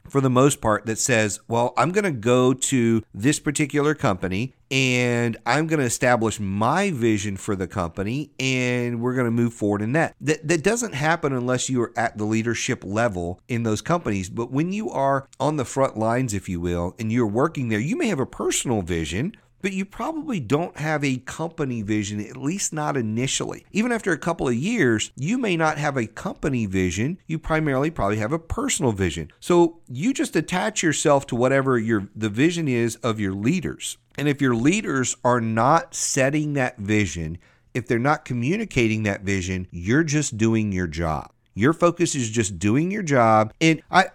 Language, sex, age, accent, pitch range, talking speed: English, male, 40-59, American, 110-155 Hz, 195 wpm